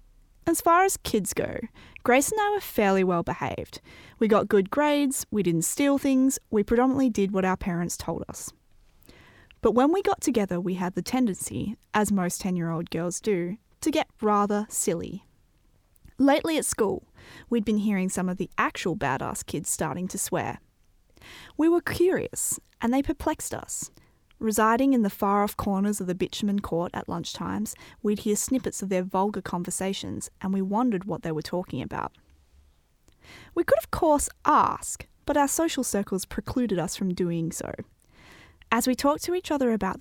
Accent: Australian